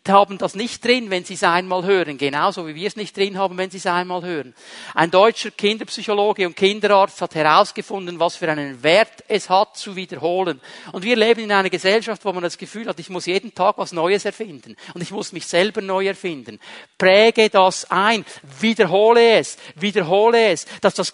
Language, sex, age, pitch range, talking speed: German, male, 50-69, 175-220 Hz, 200 wpm